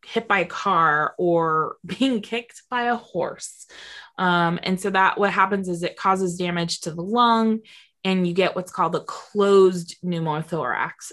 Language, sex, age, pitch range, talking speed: English, female, 20-39, 170-215 Hz, 165 wpm